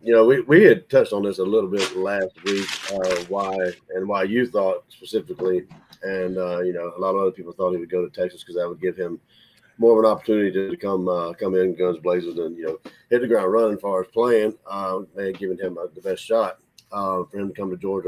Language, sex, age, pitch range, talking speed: English, male, 40-59, 95-115 Hz, 250 wpm